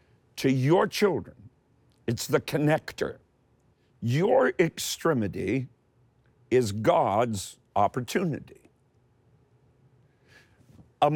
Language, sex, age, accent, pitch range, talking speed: English, male, 50-69, American, 125-165 Hz, 65 wpm